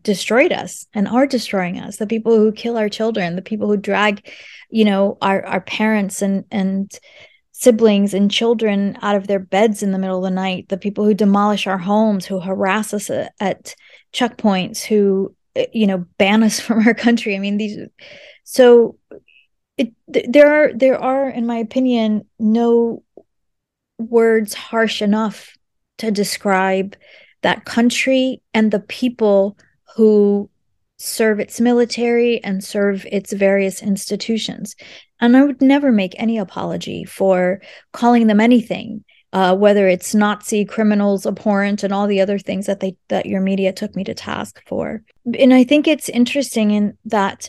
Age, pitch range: 20-39, 200-235 Hz